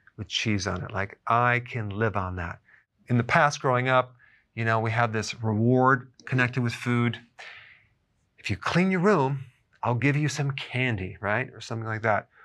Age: 40-59